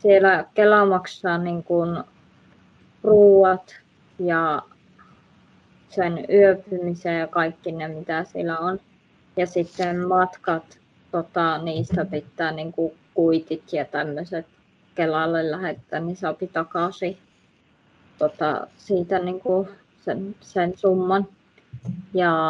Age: 20-39